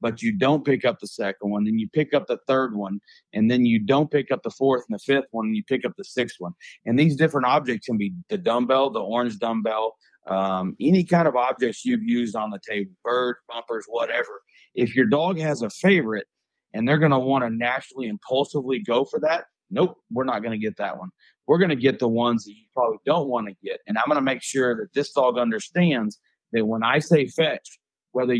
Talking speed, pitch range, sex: 235 wpm, 115-155 Hz, male